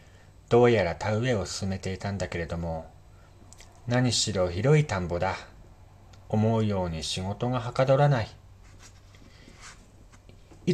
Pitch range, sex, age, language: 95-125 Hz, male, 40-59, Japanese